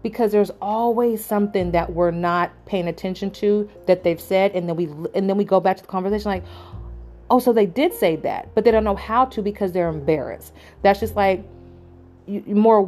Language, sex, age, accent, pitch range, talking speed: English, female, 40-59, American, 160-195 Hz, 210 wpm